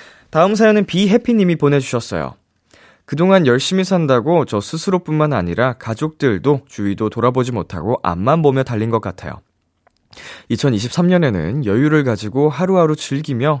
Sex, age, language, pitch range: male, 20-39, Korean, 105-150 Hz